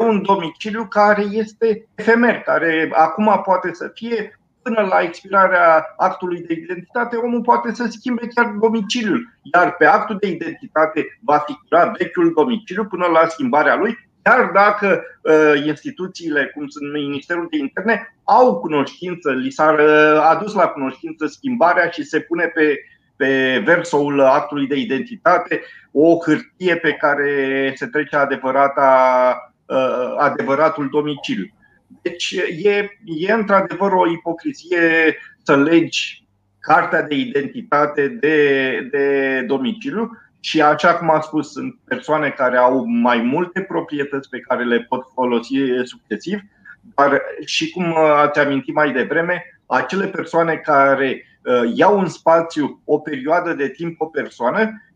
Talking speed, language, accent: 130 wpm, Romanian, native